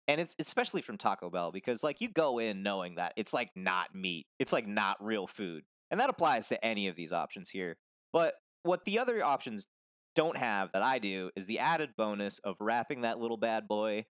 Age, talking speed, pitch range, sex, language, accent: 20-39, 215 wpm, 100-135 Hz, male, English, American